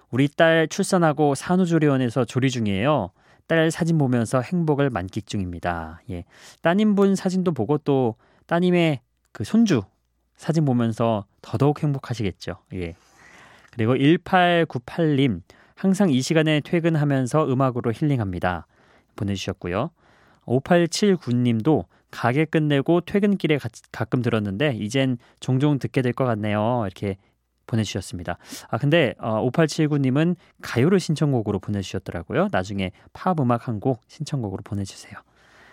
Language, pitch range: Korean, 110-155 Hz